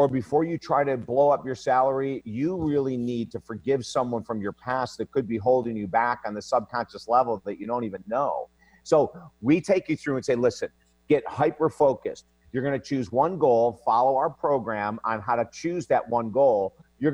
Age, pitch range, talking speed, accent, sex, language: 50-69, 120-150 Hz, 215 wpm, American, male, English